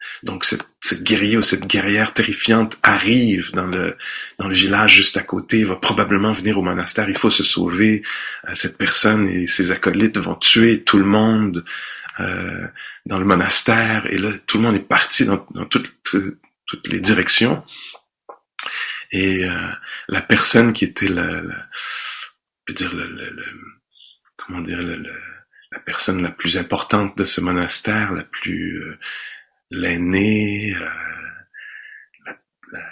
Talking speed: 155 wpm